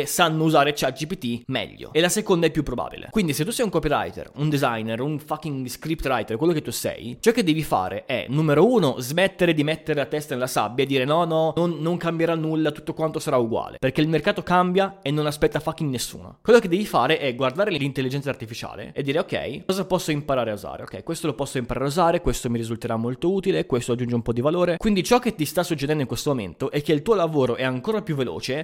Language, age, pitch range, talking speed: Italian, 20-39, 135-180 Hz, 235 wpm